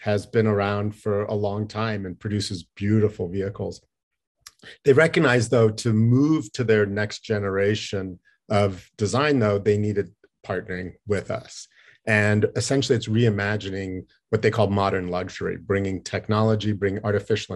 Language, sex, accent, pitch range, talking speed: English, male, American, 100-115 Hz, 140 wpm